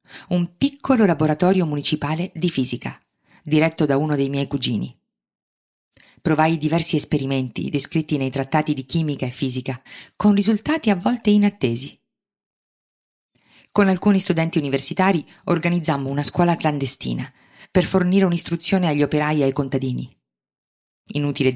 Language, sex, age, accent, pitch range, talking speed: Italian, female, 40-59, native, 140-170 Hz, 125 wpm